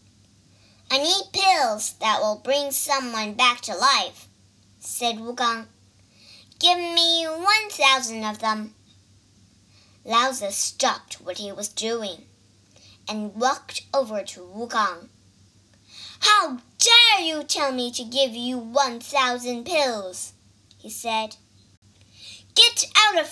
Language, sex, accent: Chinese, male, American